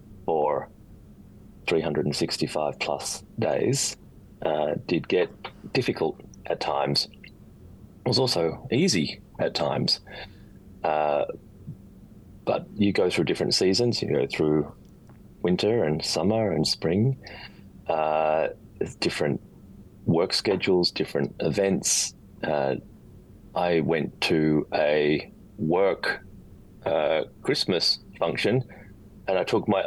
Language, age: English, 30-49